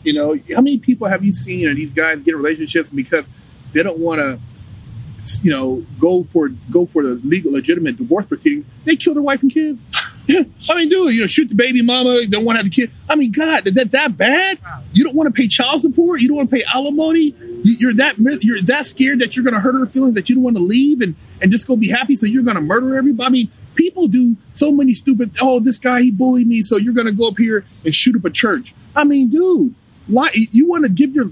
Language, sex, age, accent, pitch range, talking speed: English, male, 30-49, American, 200-265 Hz, 265 wpm